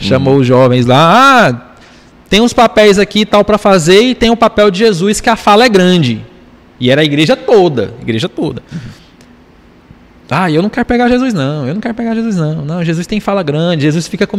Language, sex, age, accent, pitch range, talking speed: Portuguese, male, 20-39, Brazilian, 140-225 Hz, 215 wpm